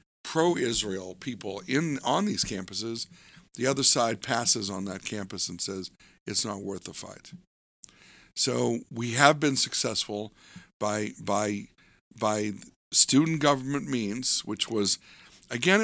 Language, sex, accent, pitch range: English, male, American, 105-130 Hz